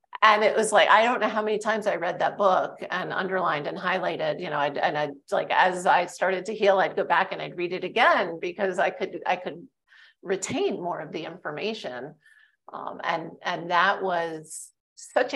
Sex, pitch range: female, 190-225 Hz